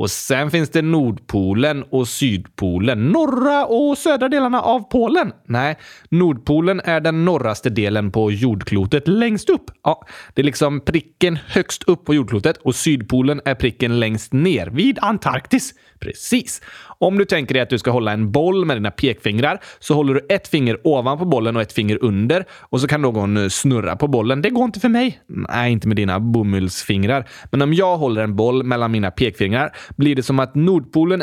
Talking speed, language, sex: 185 wpm, Swedish, male